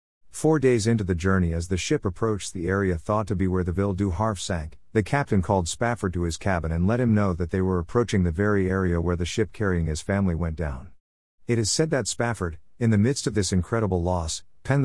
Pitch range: 85-115 Hz